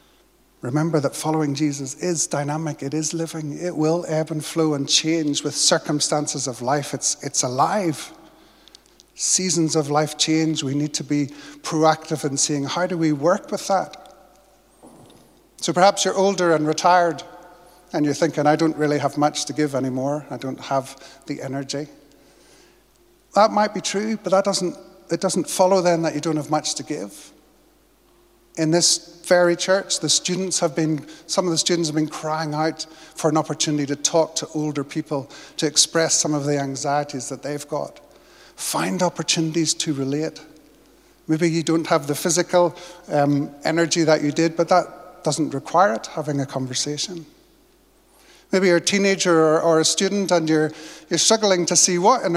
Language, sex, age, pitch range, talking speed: English, male, 50-69, 150-180 Hz, 175 wpm